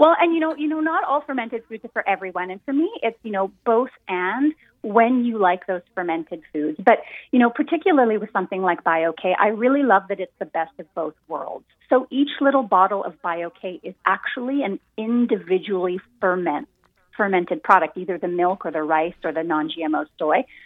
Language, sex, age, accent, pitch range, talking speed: English, female, 30-49, American, 180-250 Hz, 200 wpm